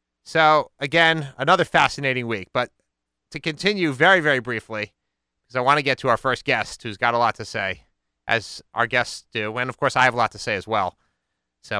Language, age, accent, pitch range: English, 30-49, American, 110-150 Hz